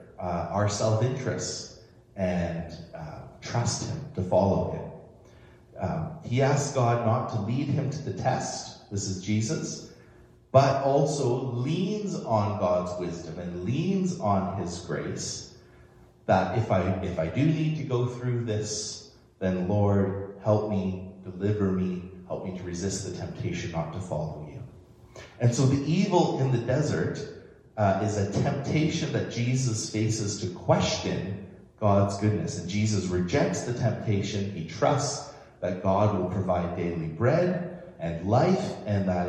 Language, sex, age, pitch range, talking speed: English, male, 30-49, 90-130 Hz, 150 wpm